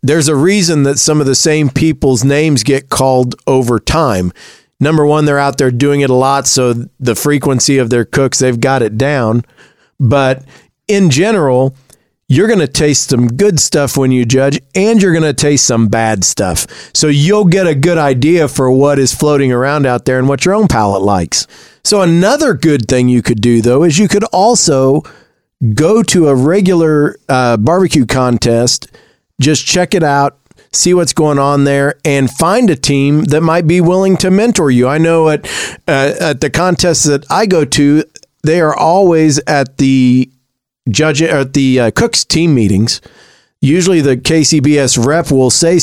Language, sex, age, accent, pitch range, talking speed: English, male, 40-59, American, 130-160 Hz, 185 wpm